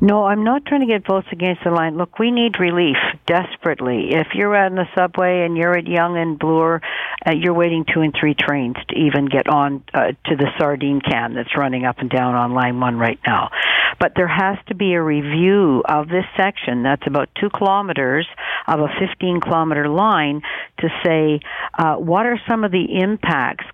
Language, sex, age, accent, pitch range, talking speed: English, female, 60-79, American, 145-185 Hz, 200 wpm